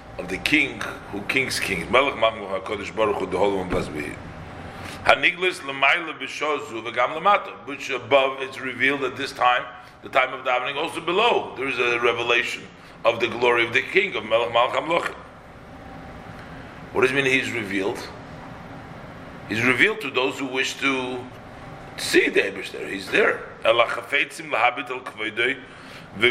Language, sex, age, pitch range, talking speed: English, male, 50-69, 120-150 Hz, 120 wpm